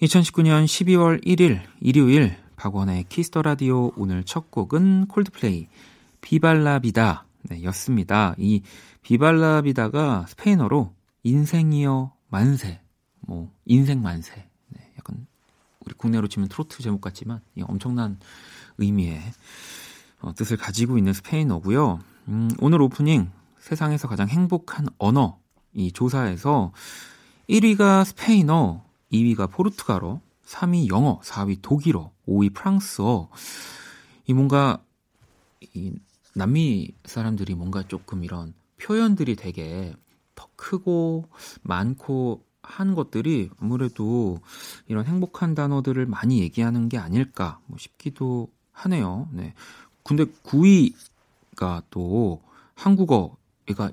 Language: Korean